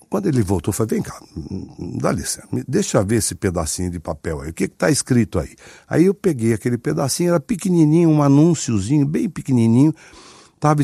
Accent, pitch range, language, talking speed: Brazilian, 105-155 Hz, Portuguese, 195 wpm